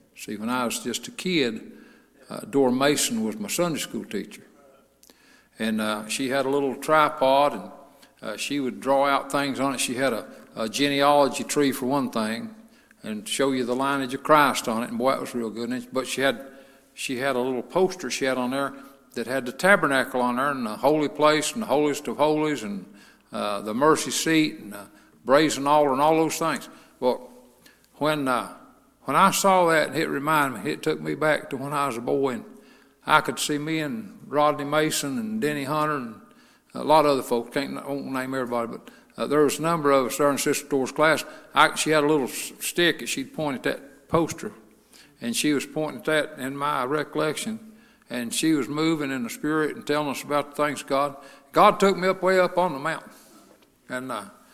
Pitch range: 130-155 Hz